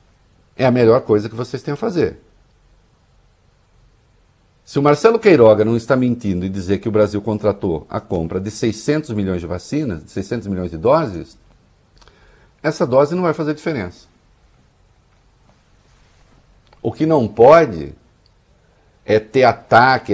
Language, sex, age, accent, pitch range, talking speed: English, male, 60-79, Brazilian, 100-130 Hz, 140 wpm